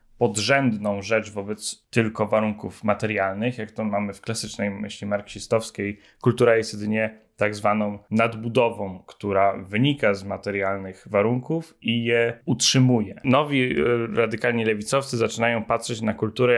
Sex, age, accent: male, 10-29, native